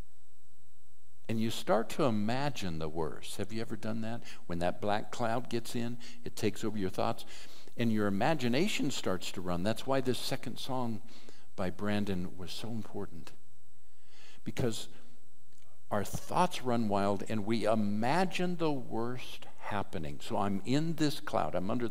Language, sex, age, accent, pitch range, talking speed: English, male, 60-79, American, 90-115 Hz, 155 wpm